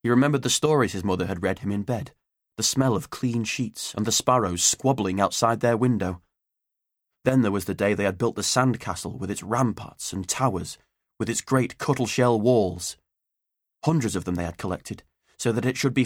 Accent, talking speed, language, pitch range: British, 200 wpm, English, 95-125 Hz